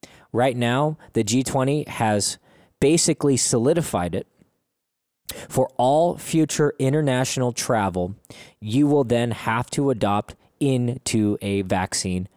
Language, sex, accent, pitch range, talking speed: English, male, American, 100-140 Hz, 105 wpm